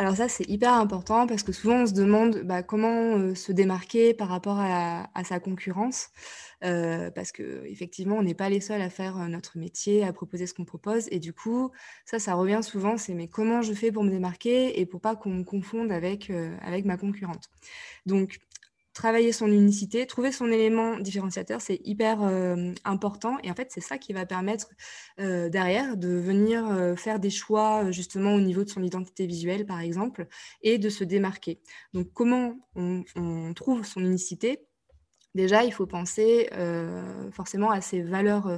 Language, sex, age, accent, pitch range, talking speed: French, female, 20-39, French, 180-215 Hz, 190 wpm